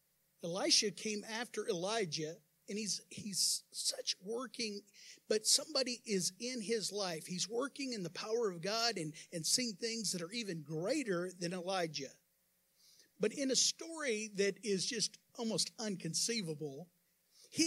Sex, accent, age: male, American, 50-69